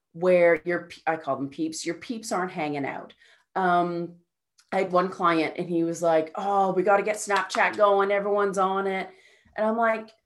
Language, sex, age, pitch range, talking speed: English, female, 30-49, 165-215 Hz, 195 wpm